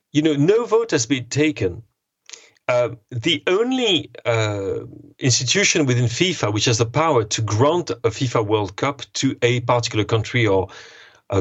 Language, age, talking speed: English, 40-59, 160 wpm